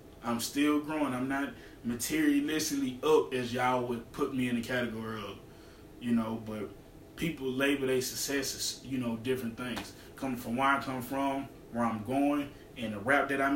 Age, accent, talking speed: 20-39, American, 175 wpm